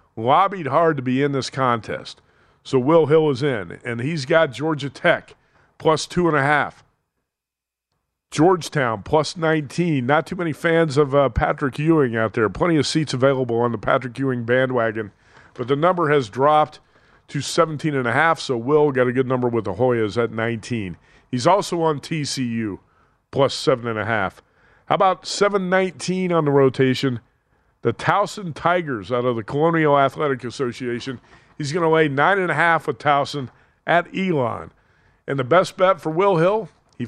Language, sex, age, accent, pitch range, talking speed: English, male, 40-59, American, 115-155 Hz, 160 wpm